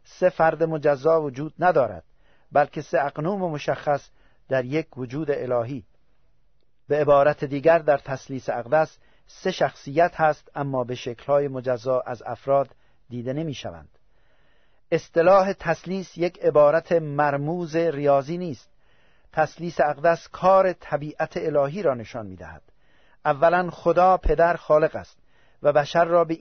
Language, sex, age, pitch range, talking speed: Persian, male, 50-69, 135-165 Hz, 125 wpm